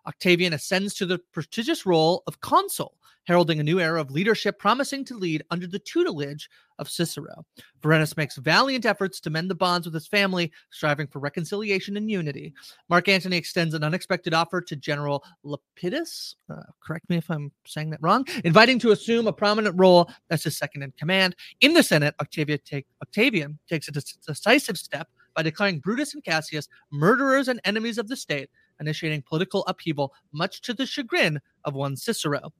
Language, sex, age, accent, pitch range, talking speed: English, male, 30-49, American, 150-205 Hz, 180 wpm